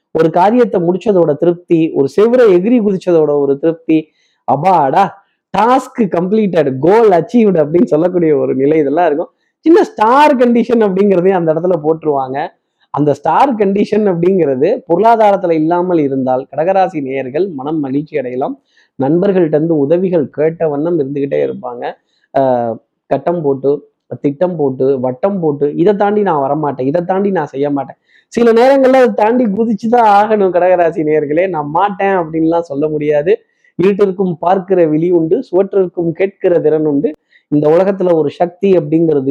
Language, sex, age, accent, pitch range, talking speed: Tamil, male, 20-39, native, 145-195 Hz, 135 wpm